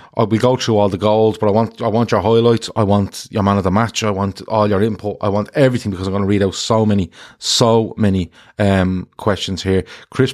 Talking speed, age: 245 wpm, 30-49